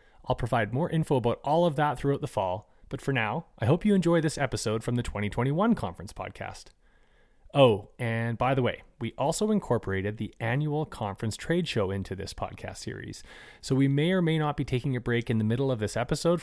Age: 30-49